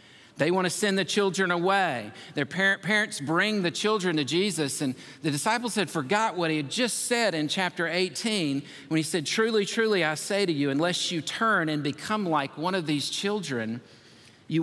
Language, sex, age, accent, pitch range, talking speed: English, male, 50-69, American, 140-185 Hz, 190 wpm